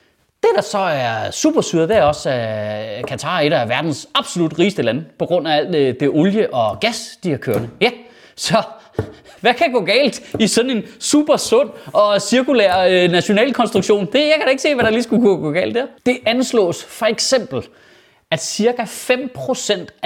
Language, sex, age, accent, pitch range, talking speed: Danish, male, 30-49, native, 180-250 Hz, 190 wpm